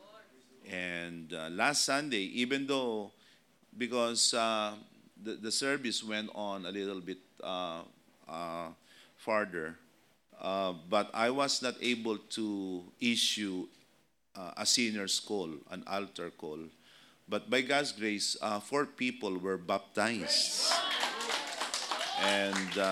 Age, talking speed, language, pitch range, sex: 50-69, 115 wpm, English, 90-115 Hz, male